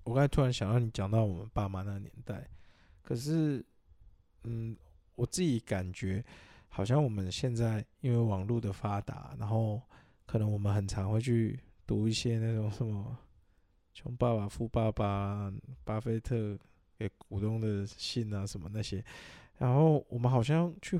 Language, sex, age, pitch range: Chinese, male, 20-39, 100-130 Hz